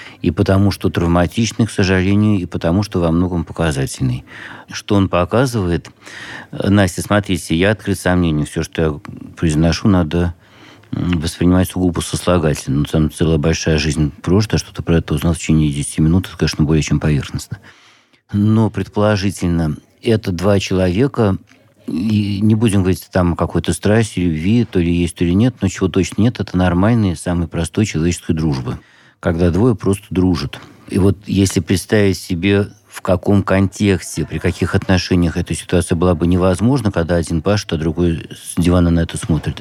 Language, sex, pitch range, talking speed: Russian, male, 85-100 Hz, 160 wpm